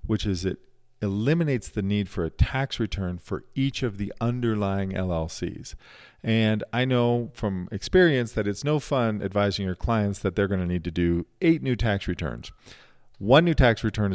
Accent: American